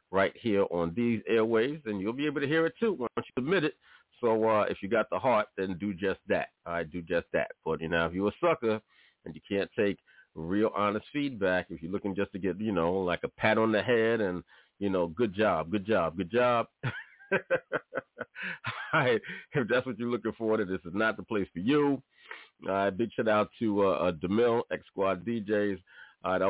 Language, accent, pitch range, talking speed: English, American, 95-110 Hz, 220 wpm